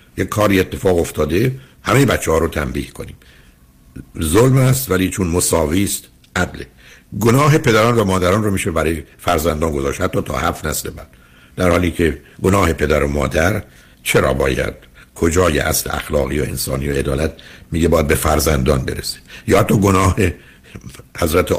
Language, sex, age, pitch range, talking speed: Persian, male, 60-79, 70-95 Hz, 150 wpm